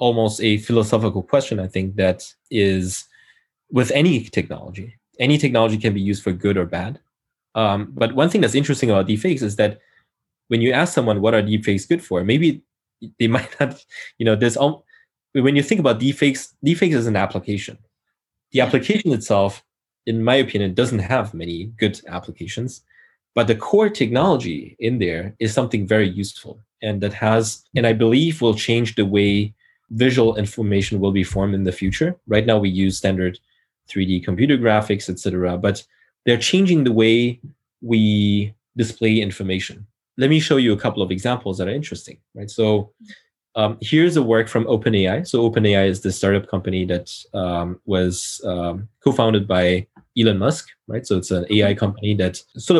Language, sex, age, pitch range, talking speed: English, male, 20-39, 95-120 Hz, 175 wpm